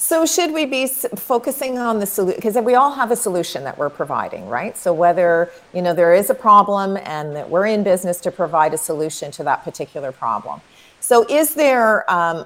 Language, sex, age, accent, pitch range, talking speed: English, female, 40-59, American, 170-225 Hz, 200 wpm